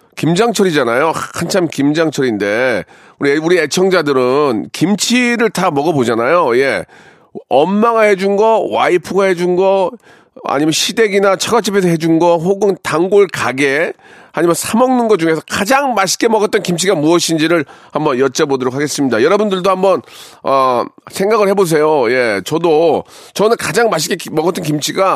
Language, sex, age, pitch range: Korean, male, 40-59, 150-200 Hz